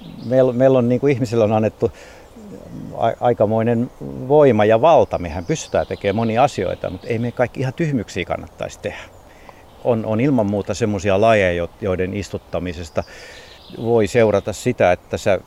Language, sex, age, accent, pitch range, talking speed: Finnish, male, 50-69, native, 90-115 Hz, 140 wpm